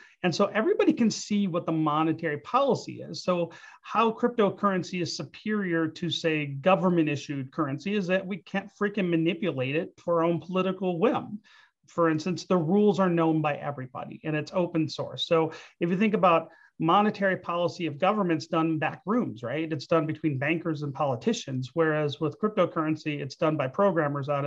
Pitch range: 155-195 Hz